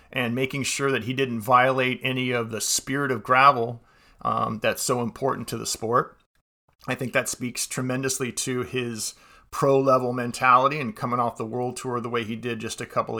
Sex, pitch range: male, 120-140 Hz